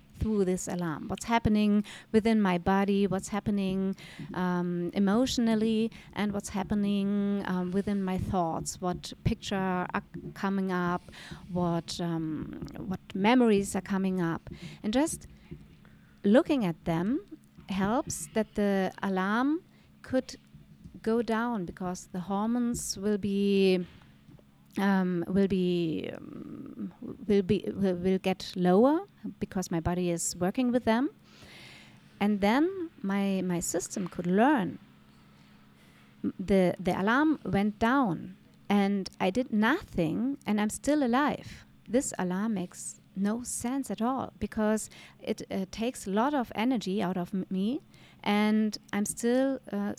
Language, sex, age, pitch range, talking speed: English, female, 30-49, 180-225 Hz, 130 wpm